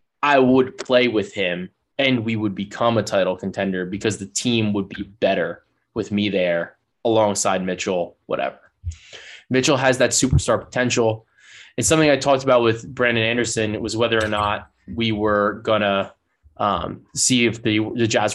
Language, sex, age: English, male, 20-39